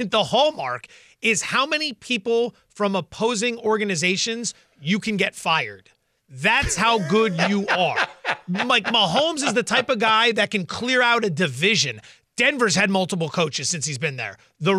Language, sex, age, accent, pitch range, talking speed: English, male, 30-49, American, 185-235 Hz, 160 wpm